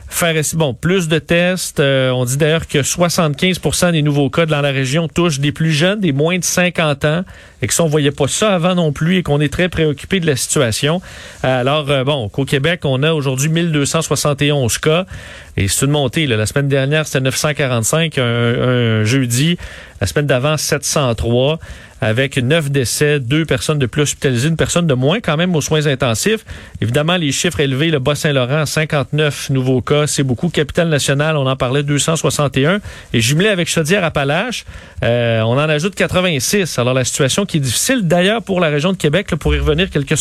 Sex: male